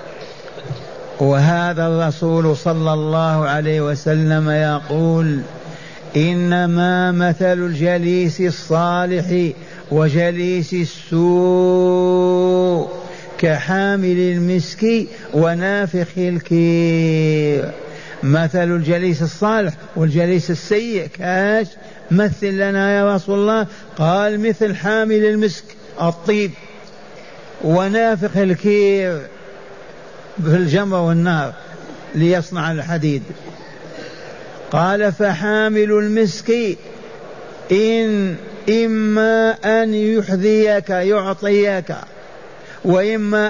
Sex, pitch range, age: male, 170-210 Hz, 50-69